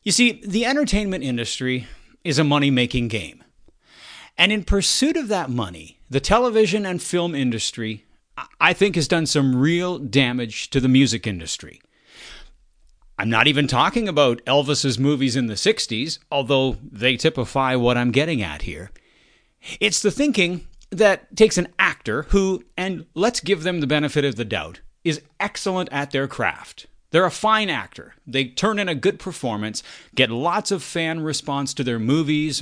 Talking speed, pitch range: 165 wpm, 130-185 Hz